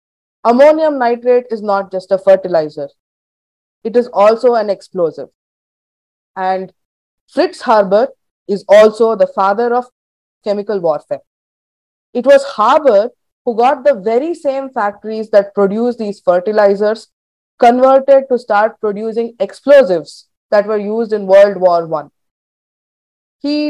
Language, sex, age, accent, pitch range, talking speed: English, female, 20-39, Indian, 200-265 Hz, 120 wpm